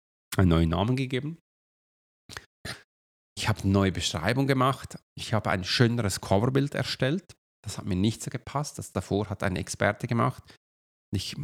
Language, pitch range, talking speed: German, 95-115 Hz, 150 wpm